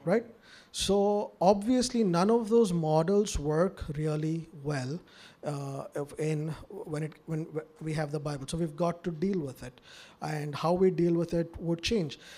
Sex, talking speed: male, 165 wpm